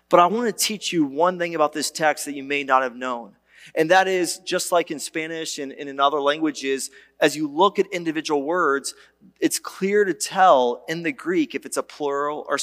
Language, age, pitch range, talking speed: English, 30-49, 155-215 Hz, 225 wpm